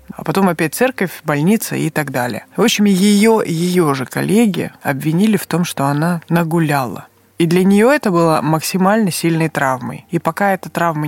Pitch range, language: 150-185 Hz, Russian